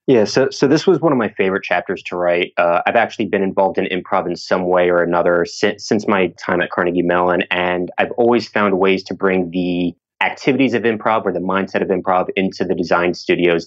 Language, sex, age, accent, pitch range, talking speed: English, male, 20-39, American, 90-100 Hz, 225 wpm